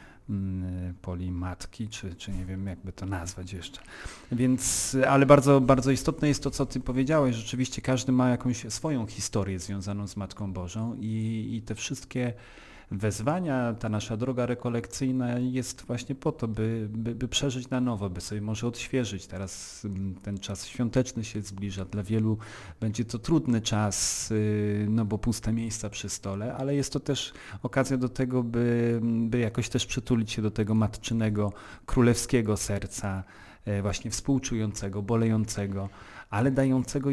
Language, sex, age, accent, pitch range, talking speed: Polish, male, 40-59, native, 100-125 Hz, 150 wpm